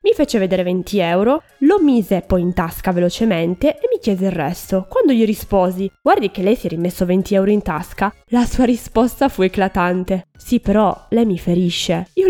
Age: 20-39